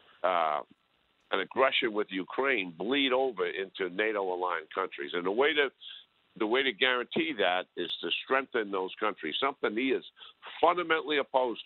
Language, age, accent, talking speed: English, 50-69, American, 150 wpm